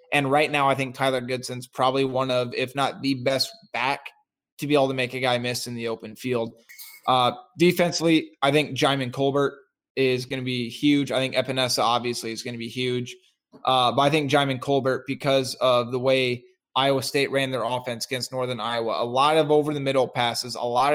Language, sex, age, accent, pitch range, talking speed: English, male, 20-39, American, 125-145 Hz, 205 wpm